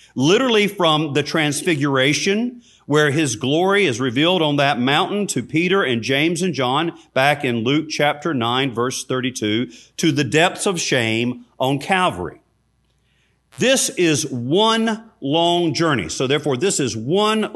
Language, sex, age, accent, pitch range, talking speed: English, male, 40-59, American, 130-180 Hz, 145 wpm